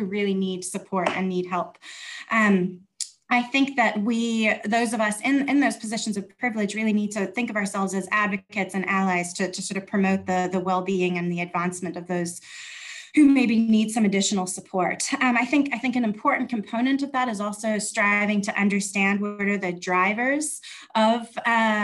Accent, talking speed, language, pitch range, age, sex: American, 190 wpm, English, 195-240 Hz, 20-39, female